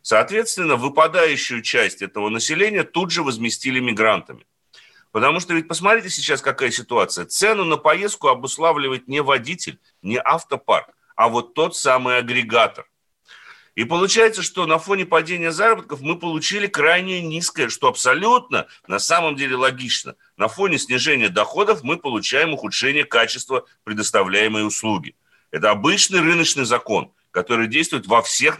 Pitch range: 130-190 Hz